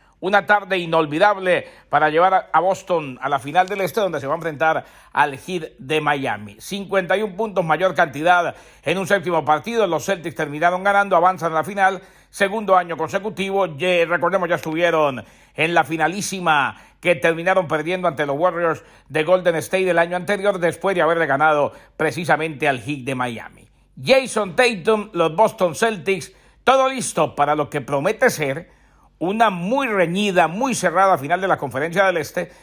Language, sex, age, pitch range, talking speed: Spanish, male, 60-79, 155-195 Hz, 165 wpm